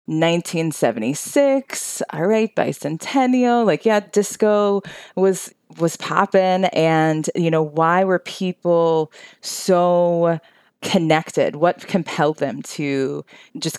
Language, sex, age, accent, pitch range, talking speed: English, female, 20-39, American, 135-160 Hz, 100 wpm